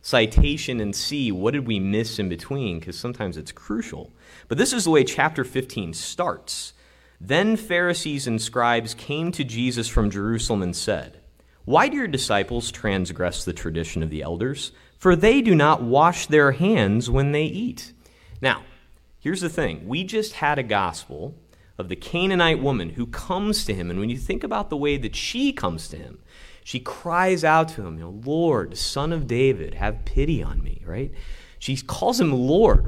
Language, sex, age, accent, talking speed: English, male, 30-49, American, 185 wpm